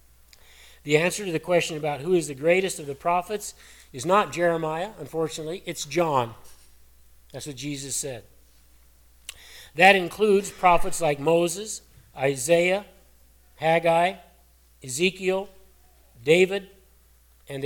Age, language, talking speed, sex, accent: 40-59, English, 110 wpm, male, American